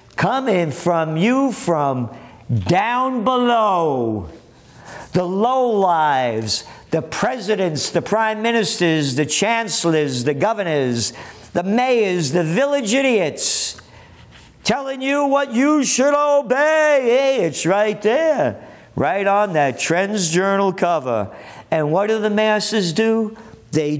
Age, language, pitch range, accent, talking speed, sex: 50-69, English, 155-245 Hz, American, 115 wpm, male